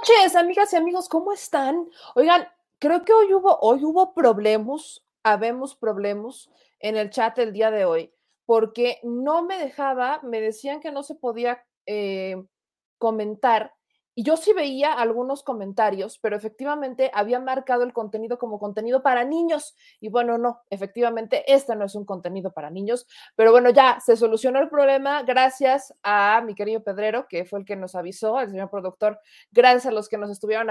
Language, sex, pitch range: Spanish, female, 225-290 Hz